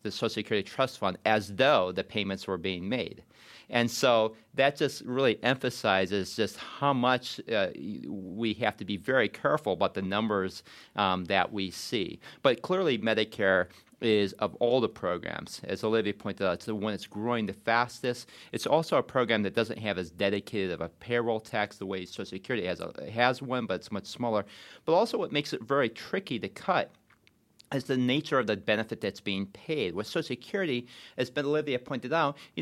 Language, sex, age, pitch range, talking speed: English, male, 40-59, 105-130 Hz, 195 wpm